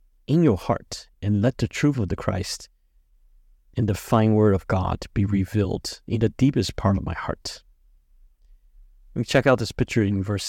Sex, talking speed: male, 190 wpm